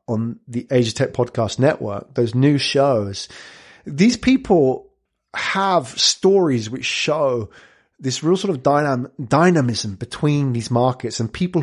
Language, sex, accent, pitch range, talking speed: English, male, British, 115-150 Hz, 135 wpm